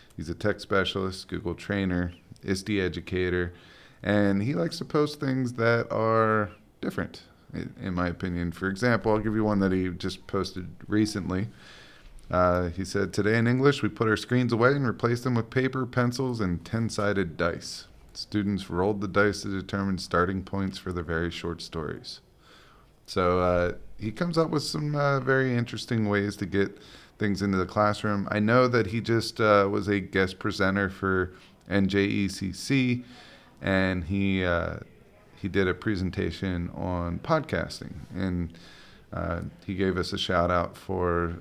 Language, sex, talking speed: English, male, 160 wpm